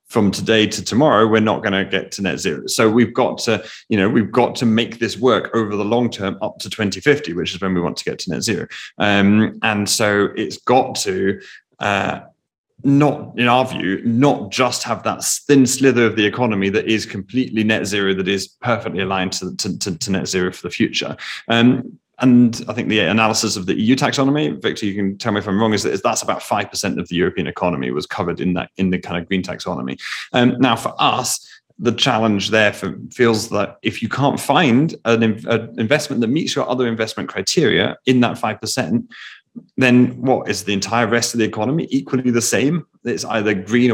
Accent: British